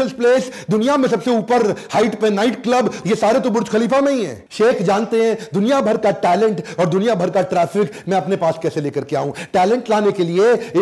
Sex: male